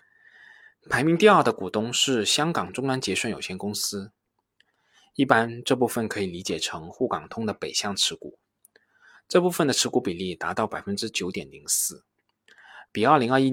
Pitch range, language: 100-140 Hz, Chinese